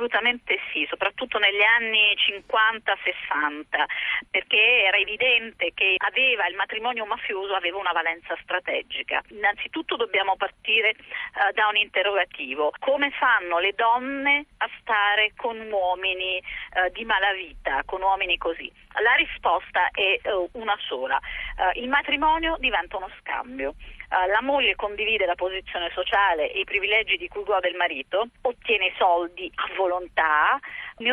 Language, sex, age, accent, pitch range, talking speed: Italian, female, 40-59, native, 190-275 Hz, 140 wpm